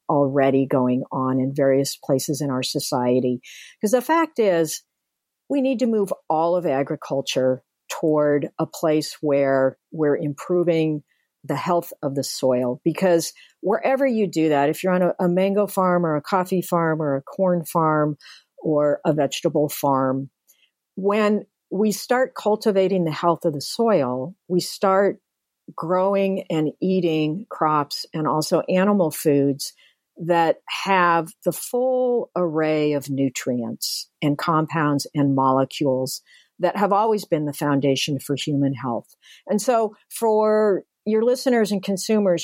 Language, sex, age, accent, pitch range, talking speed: English, female, 50-69, American, 145-205 Hz, 145 wpm